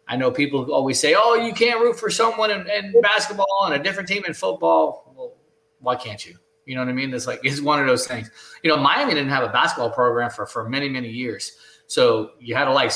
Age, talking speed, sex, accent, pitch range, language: 20-39, 250 wpm, male, American, 130-170 Hz, English